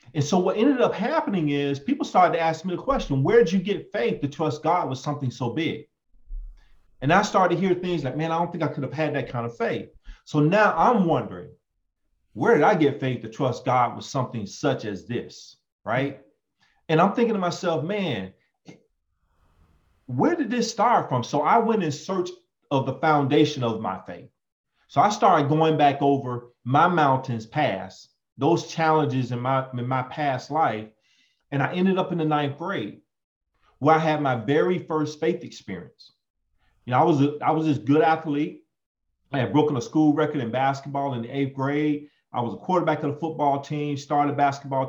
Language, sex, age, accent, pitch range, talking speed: English, male, 30-49, American, 130-165 Hz, 200 wpm